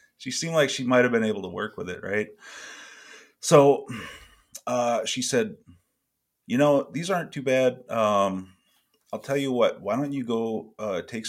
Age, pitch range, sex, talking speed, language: 30-49, 90-115 Hz, male, 180 wpm, English